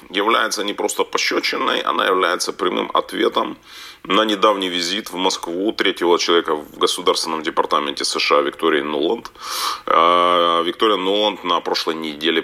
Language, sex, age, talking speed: Russian, male, 30-49, 125 wpm